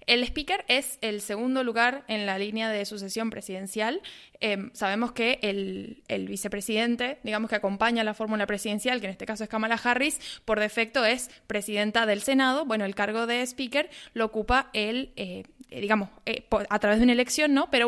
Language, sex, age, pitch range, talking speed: Spanish, female, 20-39, 215-255 Hz, 180 wpm